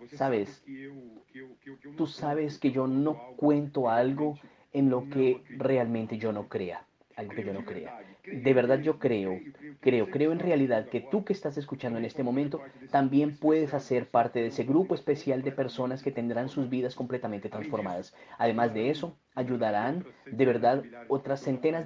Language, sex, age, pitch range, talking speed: Portuguese, male, 30-49, 125-150 Hz, 165 wpm